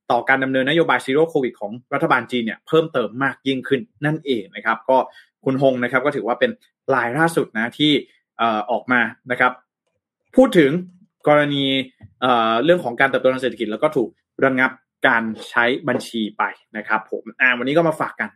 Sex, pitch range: male, 120-155 Hz